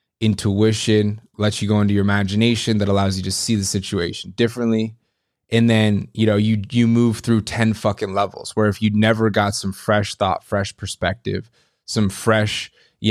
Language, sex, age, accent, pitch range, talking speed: English, male, 20-39, American, 100-115 Hz, 180 wpm